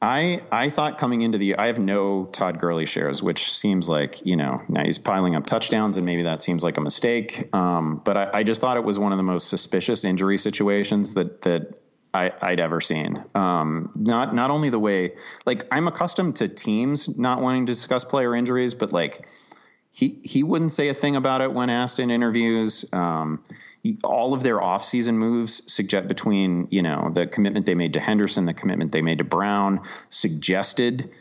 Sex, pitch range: male, 90-120 Hz